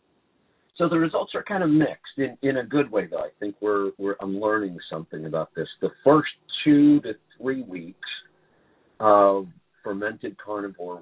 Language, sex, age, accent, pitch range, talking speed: English, male, 50-69, American, 90-110 Hz, 170 wpm